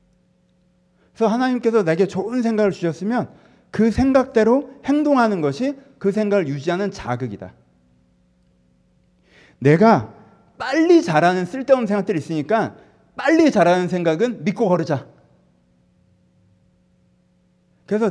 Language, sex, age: Korean, male, 40-59